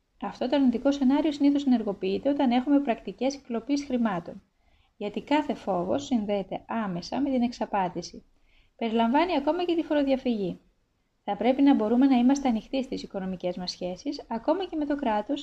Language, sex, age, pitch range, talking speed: Greek, female, 20-39, 200-275 Hz, 155 wpm